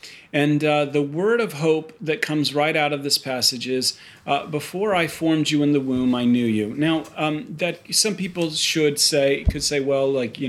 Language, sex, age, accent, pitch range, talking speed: English, male, 40-59, American, 135-170 Hz, 210 wpm